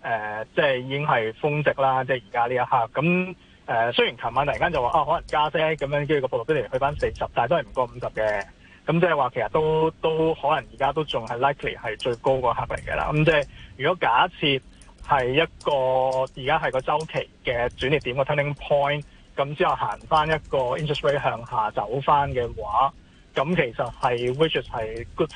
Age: 20-39